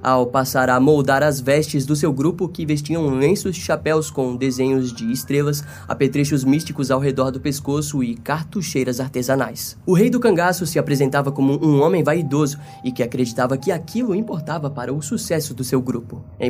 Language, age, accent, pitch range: Portuguese, 10-29, Brazilian, 130-165 Hz